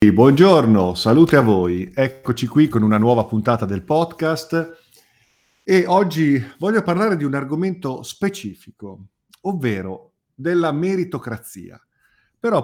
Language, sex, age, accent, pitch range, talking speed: Italian, male, 50-69, native, 110-160 Hz, 115 wpm